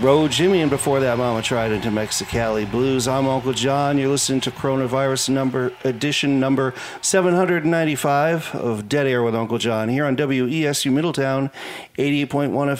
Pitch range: 120-145 Hz